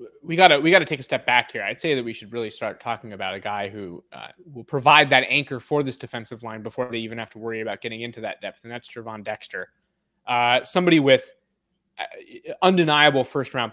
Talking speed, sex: 225 wpm, male